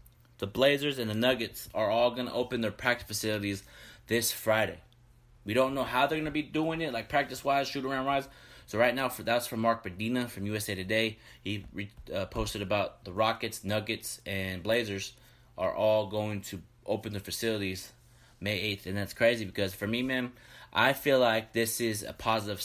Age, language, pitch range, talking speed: 20-39, English, 105-125 Hz, 185 wpm